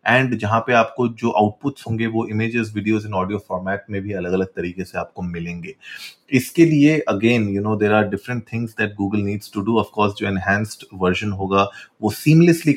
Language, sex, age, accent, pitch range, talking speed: Hindi, male, 30-49, native, 95-115 Hz, 200 wpm